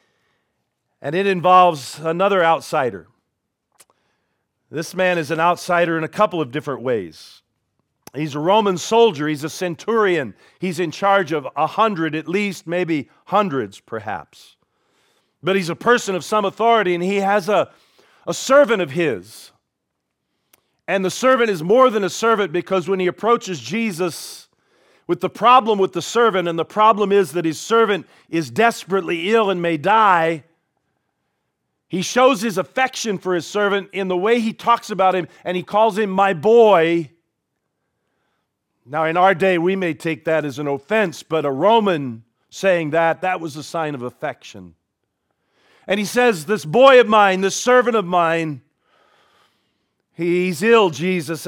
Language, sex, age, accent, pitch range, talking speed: English, male, 40-59, American, 160-210 Hz, 160 wpm